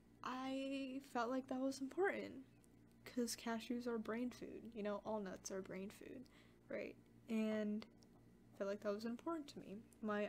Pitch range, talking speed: 190-240 Hz, 170 wpm